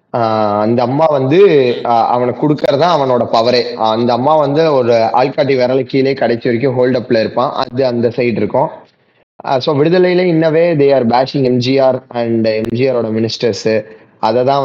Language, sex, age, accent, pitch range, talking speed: Tamil, male, 20-39, native, 120-155 Hz, 75 wpm